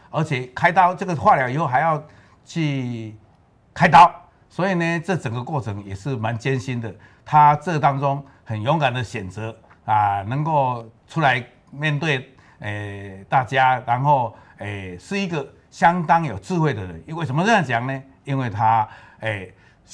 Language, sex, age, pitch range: Chinese, male, 60-79, 105-140 Hz